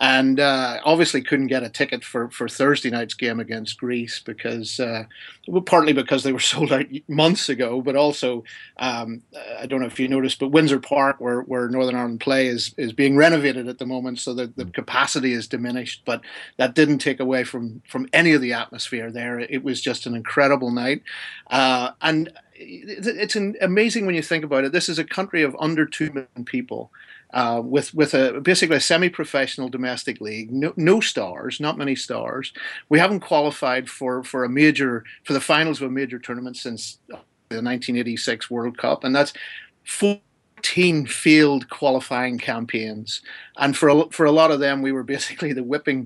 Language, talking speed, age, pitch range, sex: English, 195 wpm, 40-59, 125-155 Hz, male